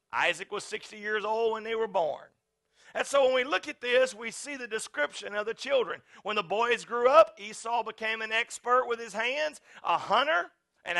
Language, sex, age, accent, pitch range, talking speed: English, male, 40-59, American, 225-285 Hz, 205 wpm